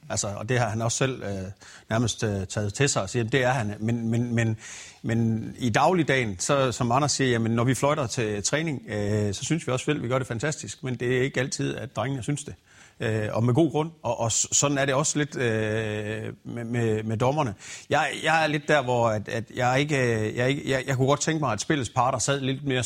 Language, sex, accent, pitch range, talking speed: Danish, male, native, 110-145 Hz, 250 wpm